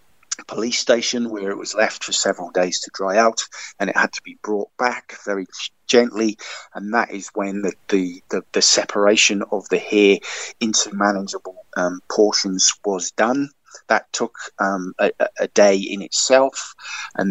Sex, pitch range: male, 100-115 Hz